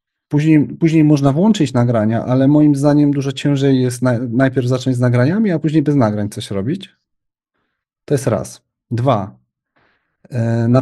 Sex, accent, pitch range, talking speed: male, native, 115-135 Hz, 145 wpm